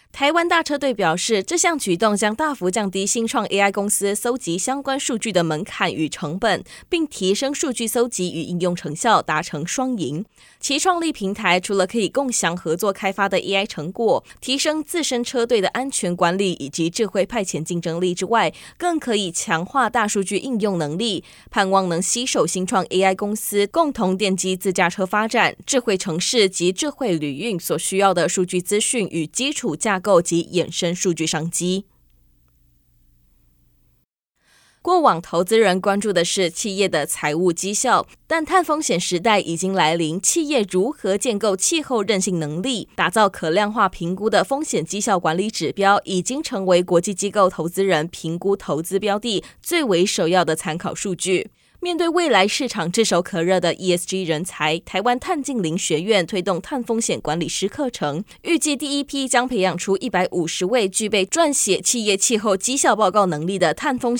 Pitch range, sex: 175-235 Hz, female